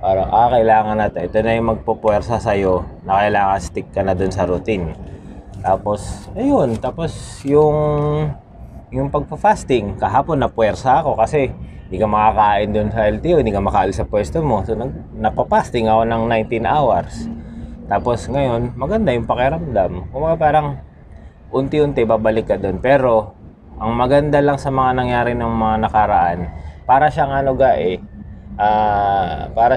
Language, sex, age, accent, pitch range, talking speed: Filipino, male, 20-39, native, 95-115 Hz, 140 wpm